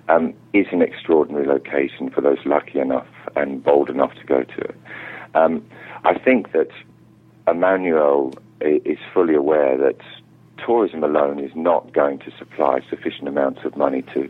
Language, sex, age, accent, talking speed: English, male, 50-69, British, 155 wpm